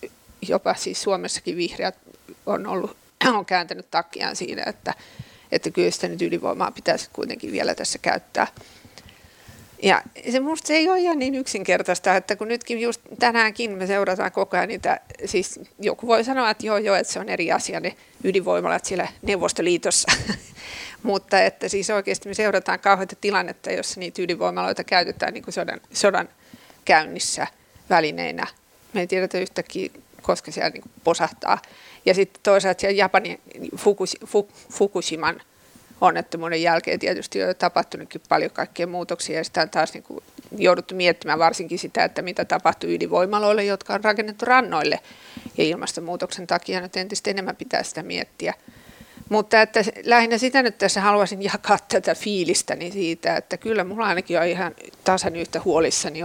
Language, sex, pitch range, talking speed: Finnish, female, 180-225 Hz, 145 wpm